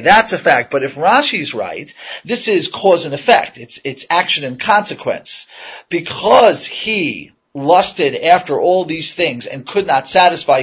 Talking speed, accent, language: 160 wpm, American, English